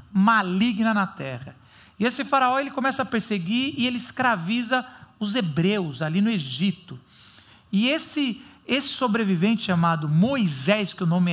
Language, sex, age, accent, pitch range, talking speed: Portuguese, male, 50-69, Brazilian, 180-230 Hz, 145 wpm